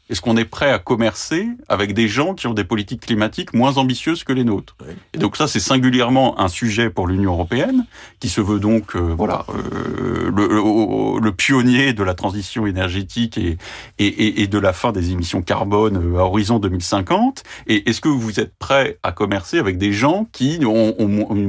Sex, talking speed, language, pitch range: male, 200 wpm, French, 95-125 Hz